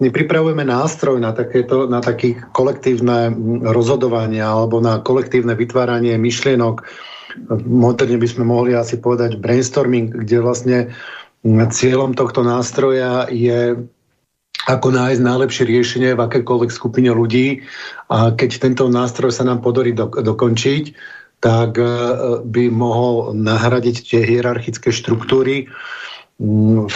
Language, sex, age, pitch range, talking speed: Slovak, male, 50-69, 115-125 Hz, 115 wpm